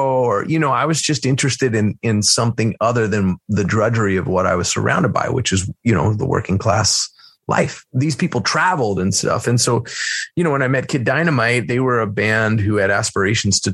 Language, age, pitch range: English, 30-49, 105-150 Hz